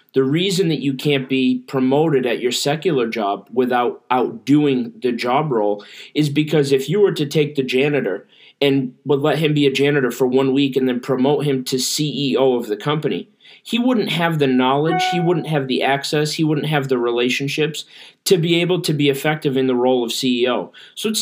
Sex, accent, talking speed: male, American, 205 wpm